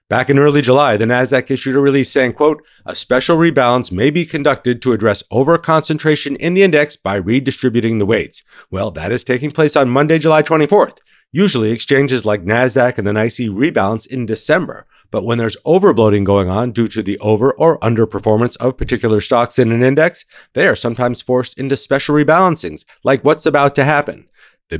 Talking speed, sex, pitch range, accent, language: 190 wpm, male, 110-140 Hz, American, English